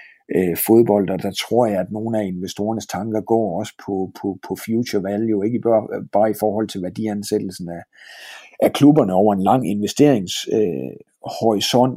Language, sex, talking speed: Danish, male, 155 wpm